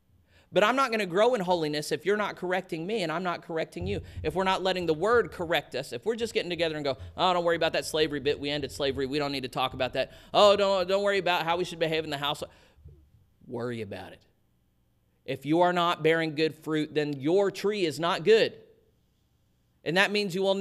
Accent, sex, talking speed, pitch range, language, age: American, male, 240 wpm, 115-180 Hz, English, 30-49